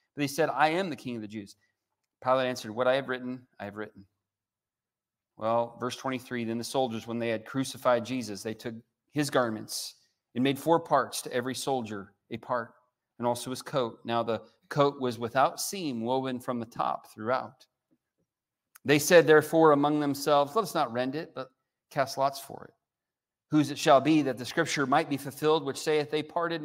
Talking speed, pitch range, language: 195 wpm, 115-140 Hz, English